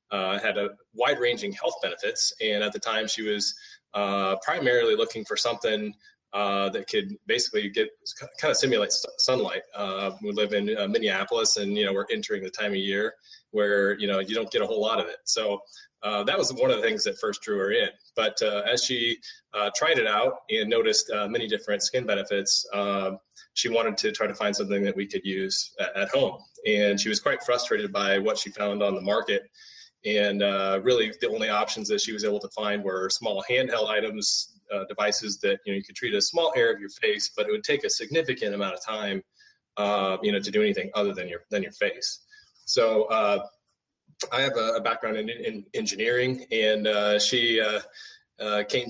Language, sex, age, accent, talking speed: English, male, 20-39, American, 215 wpm